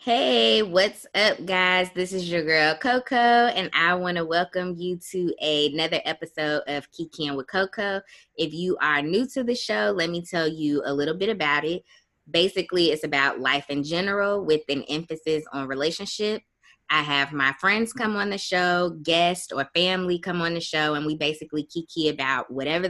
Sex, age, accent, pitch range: female, 20-39, American, 145-180 Hz